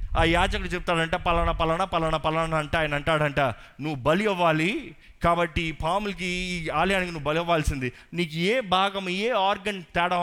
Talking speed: 155 wpm